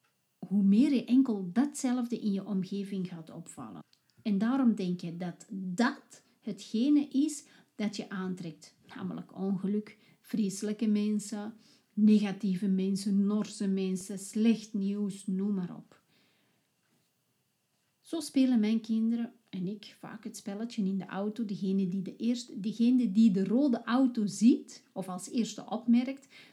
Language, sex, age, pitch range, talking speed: Dutch, female, 40-59, 195-245 Hz, 130 wpm